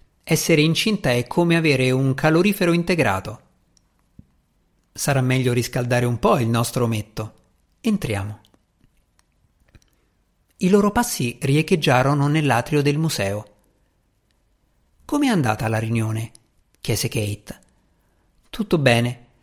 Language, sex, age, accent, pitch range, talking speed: Italian, male, 50-69, native, 120-165 Hz, 100 wpm